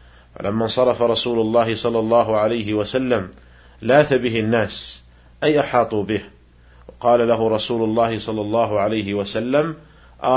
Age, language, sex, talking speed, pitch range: 50-69, Arabic, male, 135 wpm, 105-135 Hz